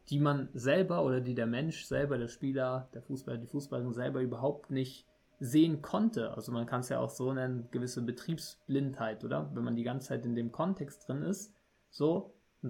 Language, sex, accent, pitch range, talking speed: German, male, German, 125-150 Hz, 200 wpm